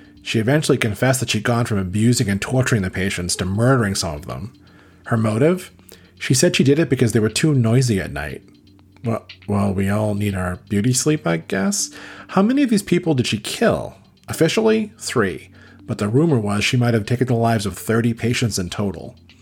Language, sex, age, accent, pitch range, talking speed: English, male, 40-59, American, 100-130 Hz, 205 wpm